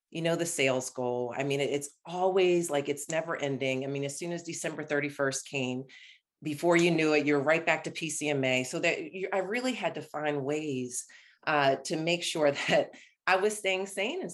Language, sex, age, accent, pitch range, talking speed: English, female, 30-49, American, 145-190 Hz, 205 wpm